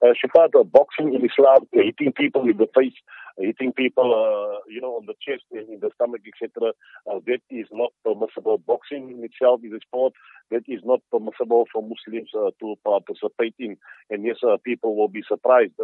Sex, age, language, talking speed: male, 50-69, English, 195 wpm